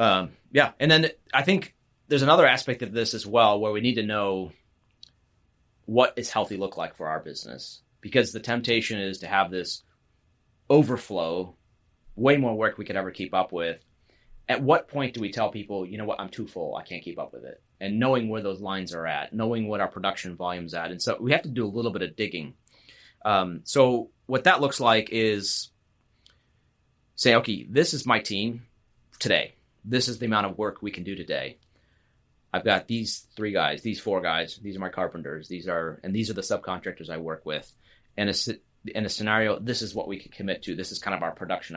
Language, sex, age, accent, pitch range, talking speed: English, male, 30-49, American, 95-115 Hz, 215 wpm